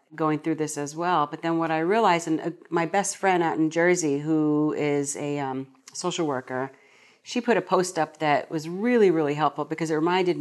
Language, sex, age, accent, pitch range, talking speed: English, female, 40-59, American, 150-185 Hz, 210 wpm